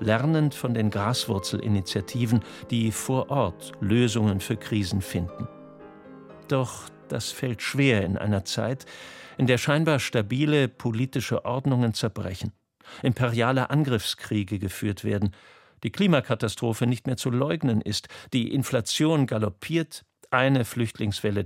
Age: 50-69